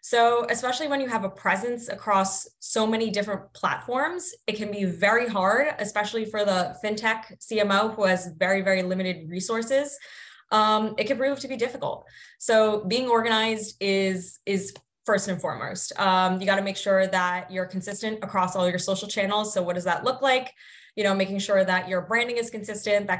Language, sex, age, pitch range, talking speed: English, female, 20-39, 185-220 Hz, 190 wpm